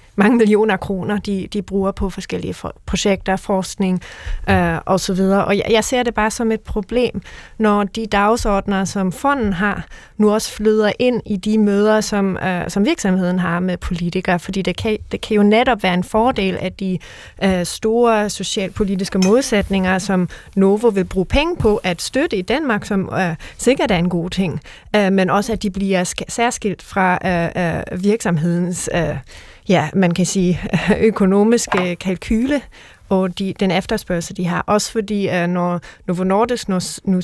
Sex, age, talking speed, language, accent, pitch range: female, 30-49, 175 wpm, Danish, native, 185-215 Hz